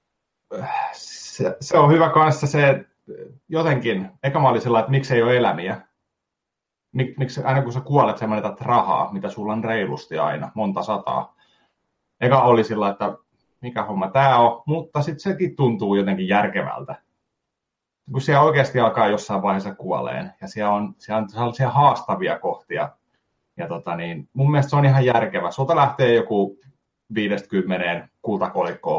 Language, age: Finnish, 30-49